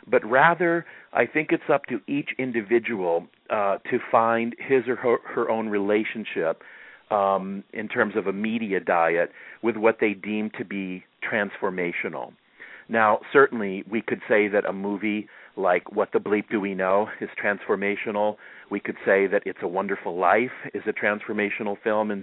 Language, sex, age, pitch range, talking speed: English, male, 50-69, 95-120 Hz, 165 wpm